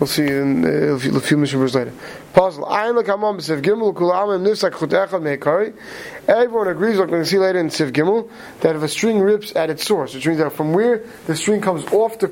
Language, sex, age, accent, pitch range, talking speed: English, male, 30-49, American, 165-205 Hz, 190 wpm